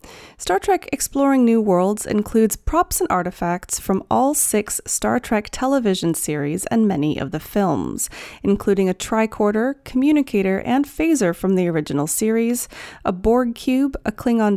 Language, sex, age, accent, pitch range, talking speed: English, female, 30-49, American, 180-250 Hz, 150 wpm